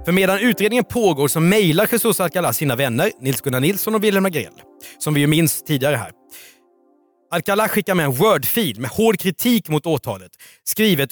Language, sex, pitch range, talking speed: Swedish, male, 140-205 Hz, 180 wpm